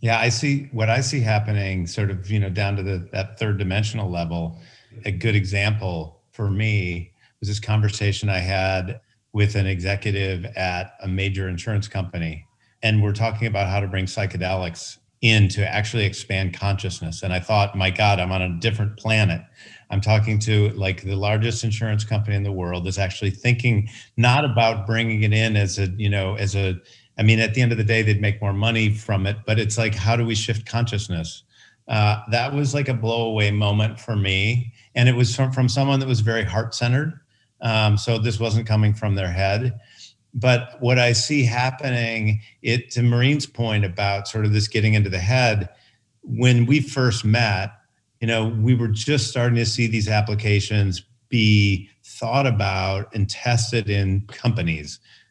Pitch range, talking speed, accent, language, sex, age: 100-115 Hz, 190 wpm, American, English, male, 50-69